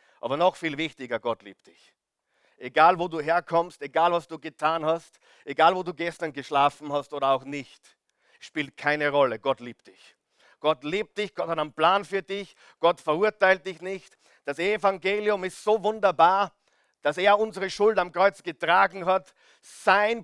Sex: male